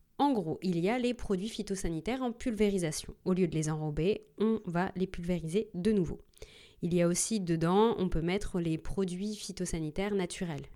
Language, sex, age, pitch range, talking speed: French, female, 30-49, 170-210 Hz, 185 wpm